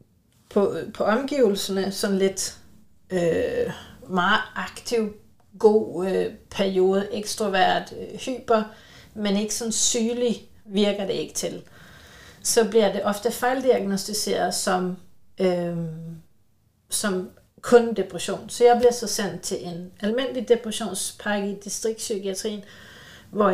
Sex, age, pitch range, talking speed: female, 40-59, 185-220 Hz, 110 wpm